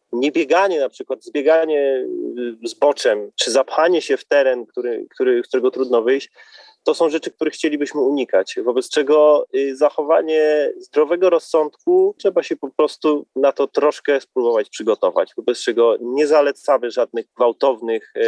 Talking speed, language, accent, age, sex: 135 wpm, Polish, native, 30-49, male